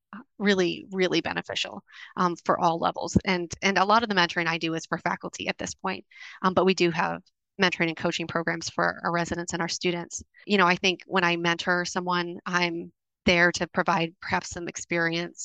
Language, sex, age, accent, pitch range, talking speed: English, female, 30-49, American, 170-185 Hz, 200 wpm